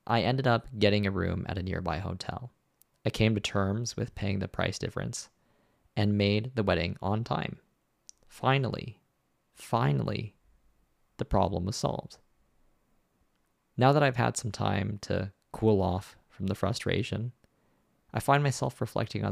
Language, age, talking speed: English, 20-39, 150 wpm